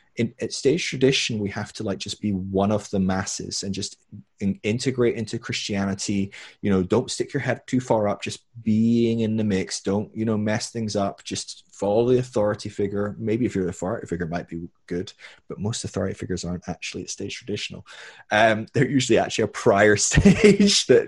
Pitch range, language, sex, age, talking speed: 95-120 Hz, English, male, 20-39, 195 wpm